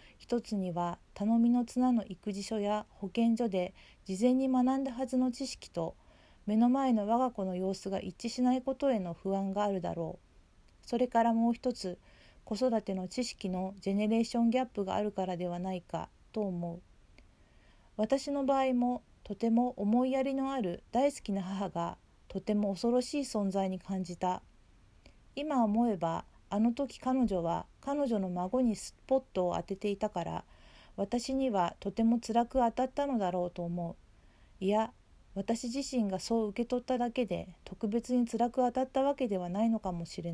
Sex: female